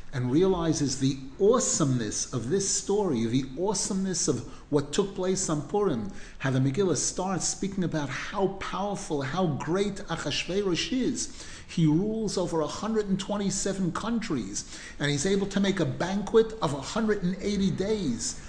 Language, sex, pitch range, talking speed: English, male, 135-190 Hz, 135 wpm